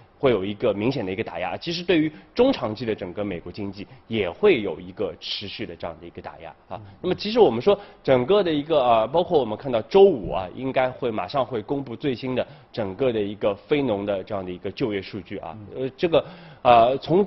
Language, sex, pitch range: Chinese, male, 100-160 Hz